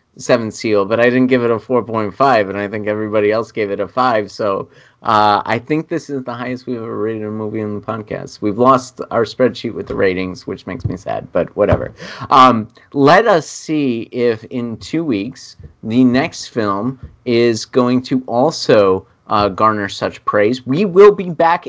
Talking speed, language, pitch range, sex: 195 wpm, English, 105-135 Hz, male